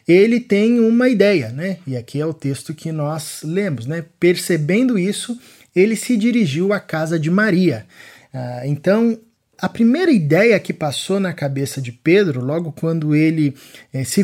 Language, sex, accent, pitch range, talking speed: Portuguese, male, Brazilian, 135-185 Hz, 155 wpm